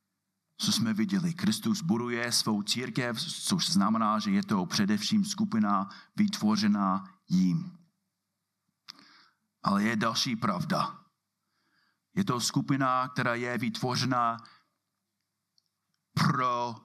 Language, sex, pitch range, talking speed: Czech, male, 140-205 Hz, 95 wpm